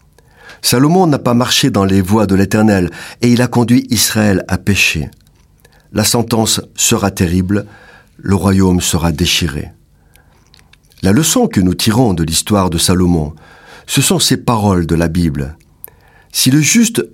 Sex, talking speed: male, 150 wpm